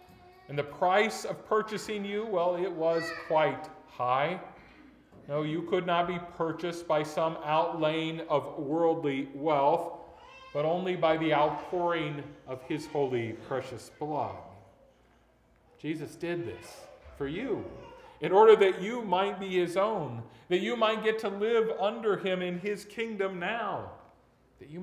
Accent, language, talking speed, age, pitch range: American, English, 145 wpm, 40-59, 150-195 Hz